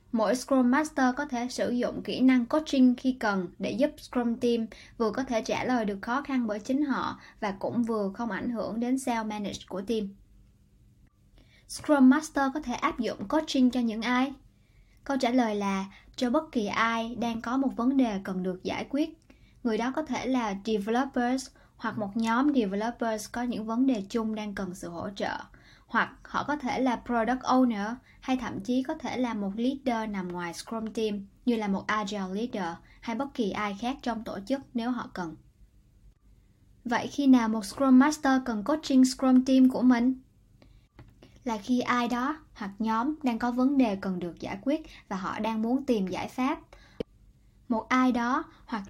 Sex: male